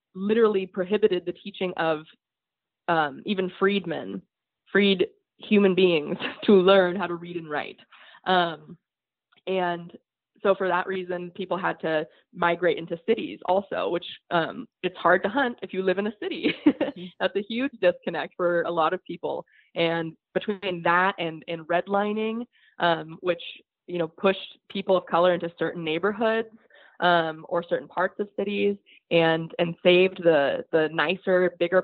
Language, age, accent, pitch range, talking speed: English, 20-39, American, 170-205 Hz, 155 wpm